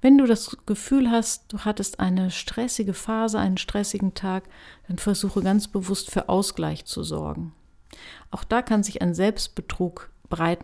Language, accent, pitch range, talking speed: German, German, 160-210 Hz, 160 wpm